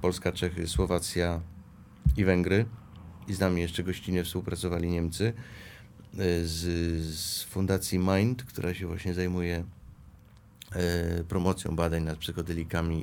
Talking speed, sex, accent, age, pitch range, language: 110 wpm, male, native, 30-49, 90-110 Hz, Polish